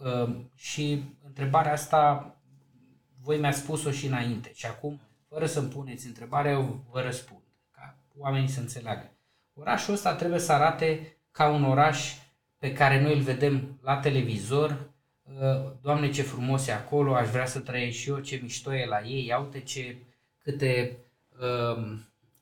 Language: Romanian